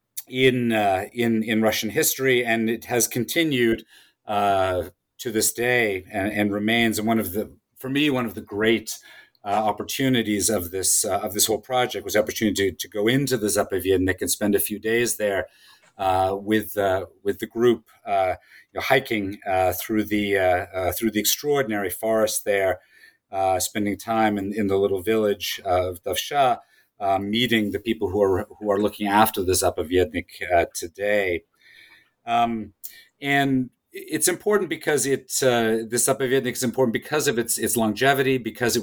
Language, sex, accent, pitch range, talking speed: English, male, American, 100-125 Hz, 175 wpm